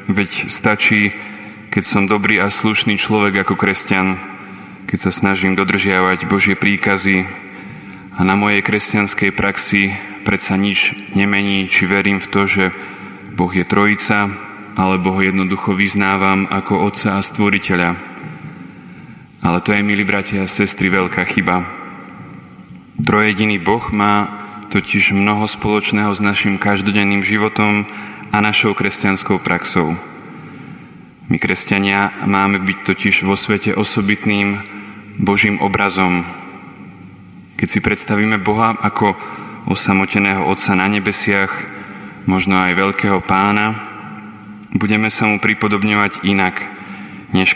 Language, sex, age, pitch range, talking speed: Slovak, male, 20-39, 95-105 Hz, 115 wpm